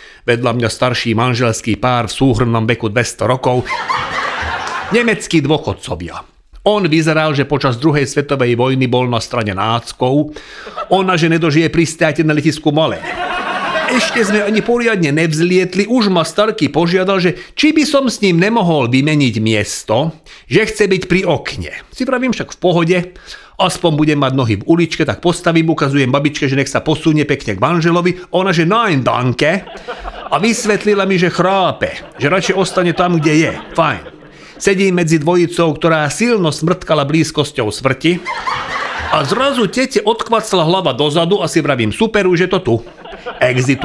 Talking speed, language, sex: 155 wpm, Slovak, male